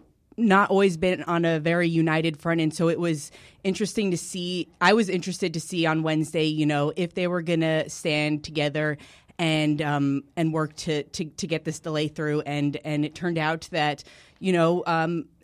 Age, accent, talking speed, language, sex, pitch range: 20-39, American, 200 wpm, English, female, 150-165 Hz